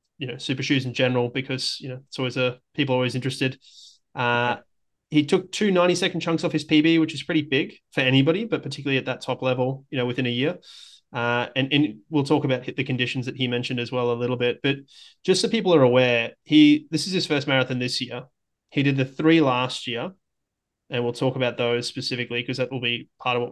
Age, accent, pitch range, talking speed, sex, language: 20-39, Australian, 125-145 Hz, 235 wpm, male, English